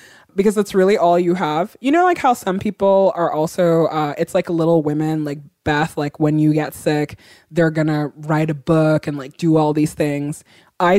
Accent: American